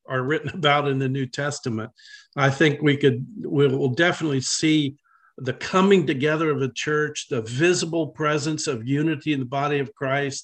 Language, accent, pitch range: English, American, 135-160 Hz